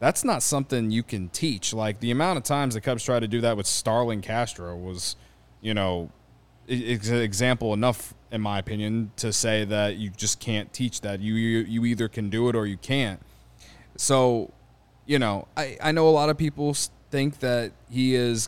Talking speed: 190 wpm